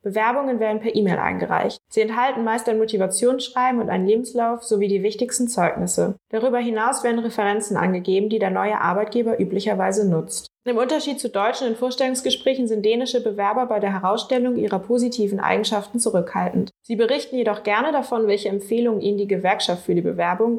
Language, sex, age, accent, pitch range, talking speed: Danish, female, 20-39, German, 195-240 Hz, 165 wpm